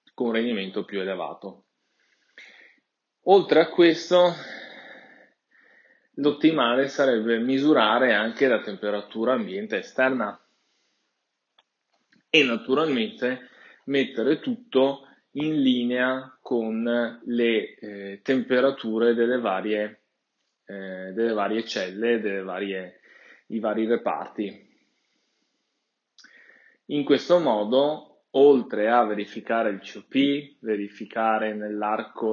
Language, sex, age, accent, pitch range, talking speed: Italian, male, 20-39, native, 105-135 Hz, 85 wpm